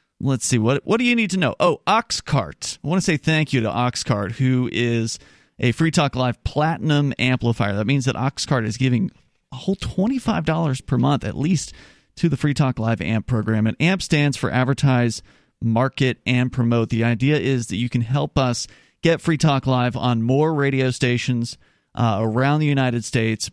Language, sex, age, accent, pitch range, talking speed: English, male, 30-49, American, 115-150 Hz, 195 wpm